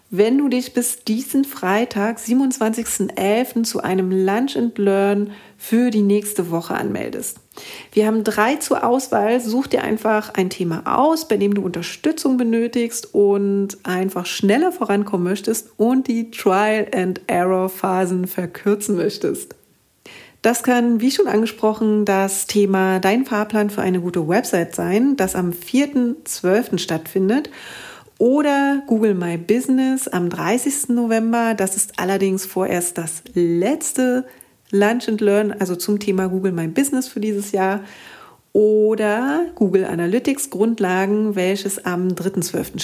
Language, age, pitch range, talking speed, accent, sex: German, 40-59, 190-235 Hz, 135 wpm, German, female